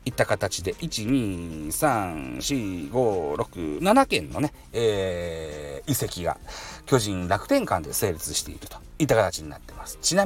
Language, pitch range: Japanese, 105-175 Hz